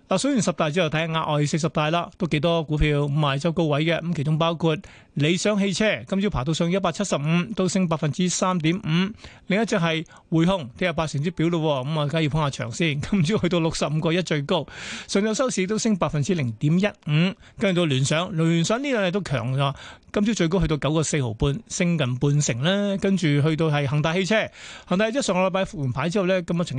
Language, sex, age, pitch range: Chinese, male, 30-49, 150-185 Hz